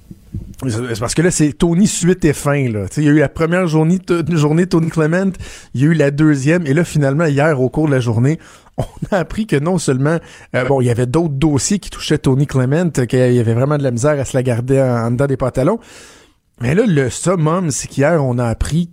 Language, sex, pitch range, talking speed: French, male, 125-155 Hz, 245 wpm